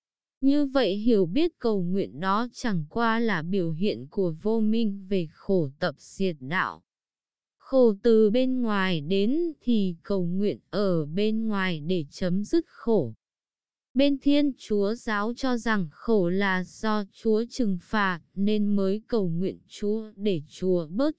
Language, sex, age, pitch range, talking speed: Vietnamese, female, 20-39, 185-235 Hz, 155 wpm